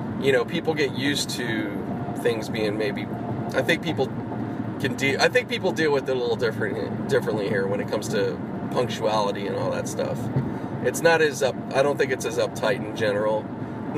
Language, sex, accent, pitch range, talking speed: English, male, American, 115-165 Hz, 200 wpm